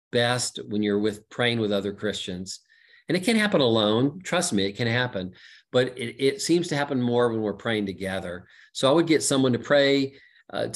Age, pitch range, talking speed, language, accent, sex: 40-59, 110-140 Hz, 205 wpm, English, American, male